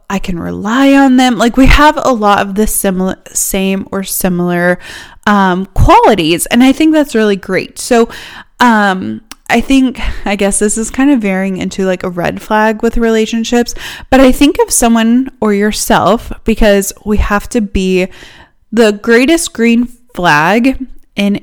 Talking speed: 165 wpm